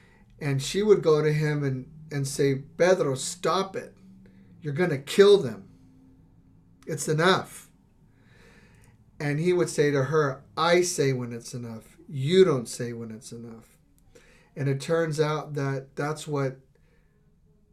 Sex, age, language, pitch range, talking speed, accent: male, 40-59, English, 130-155 Hz, 140 wpm, American